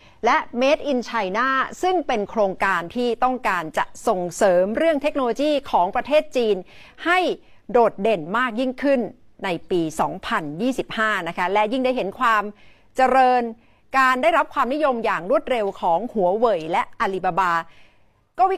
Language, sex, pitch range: Thai, female, 195-275 Hz